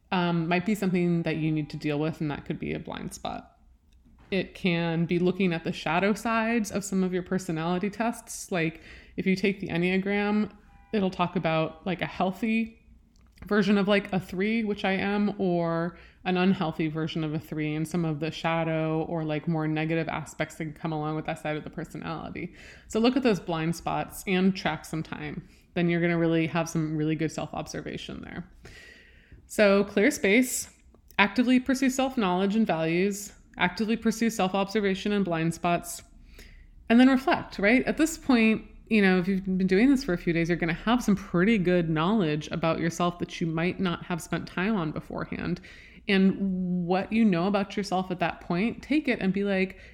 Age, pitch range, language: 20-39, 165-205 Hz, English